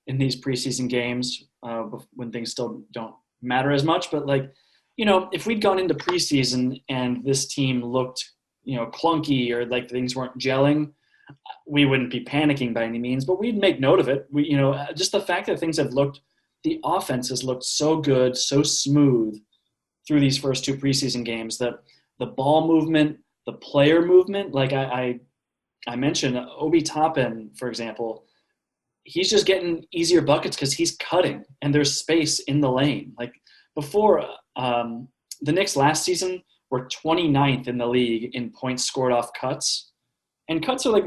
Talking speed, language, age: 175 wpm, English, 20-39